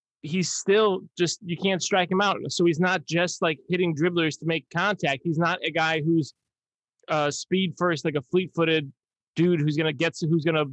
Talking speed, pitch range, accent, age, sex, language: 200 wpm, 150-175 Hz, American, 30-49, male, English